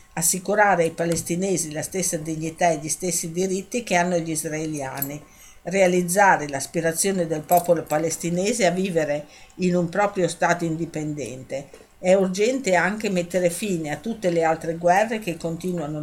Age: 50-69